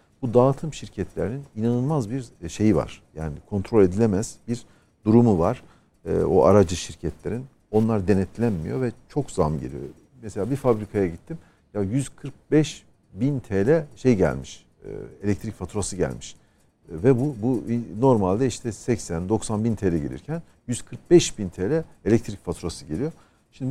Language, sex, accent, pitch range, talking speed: Turkish, male, native, 95-130 Hz, 130 wpm